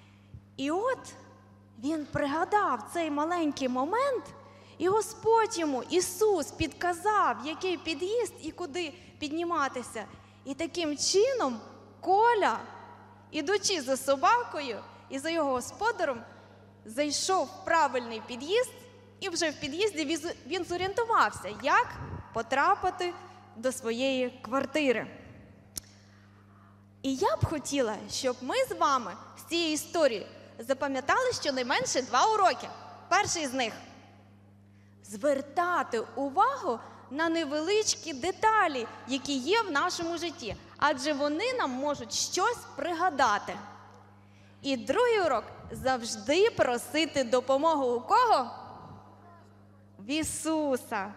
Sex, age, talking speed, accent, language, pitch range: female, 20-39, 105 wpm, native, Ukrainian, 235-355 Hz